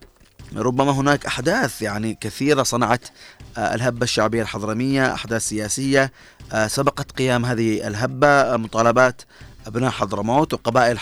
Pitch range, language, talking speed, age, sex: 110-125 Hz, Arabic, 115 wpm, 30-49, male